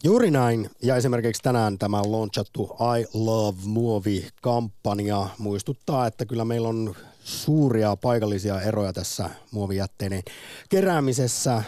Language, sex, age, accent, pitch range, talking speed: Finnish, male, 30-49, native, 100-125 Hz, 110 wpm